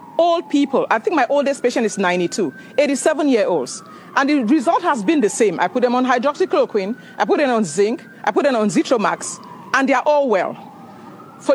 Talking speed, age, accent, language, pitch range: 190 wpm, 40-59, Nigerian, English, 230-315 Hz